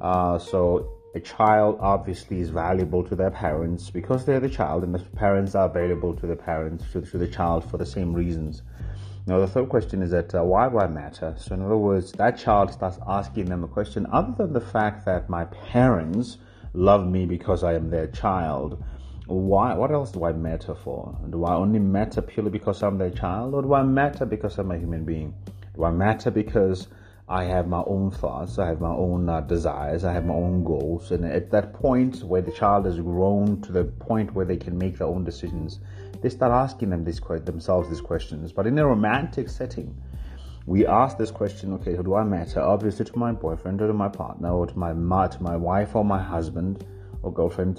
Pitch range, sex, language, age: 85-105 Hz, male, English, 30-49